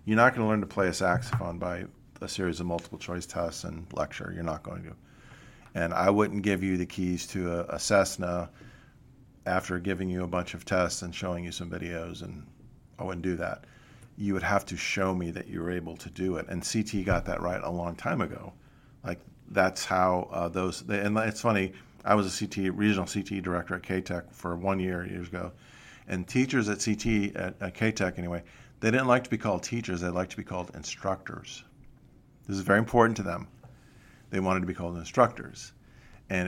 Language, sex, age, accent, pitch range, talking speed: English, male, 50-69, American, 90-105 Hz, 215 wpm